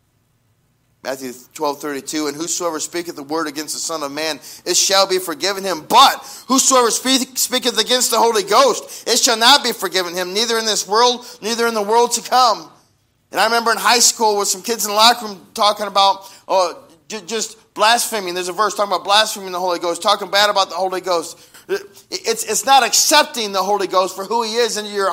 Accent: American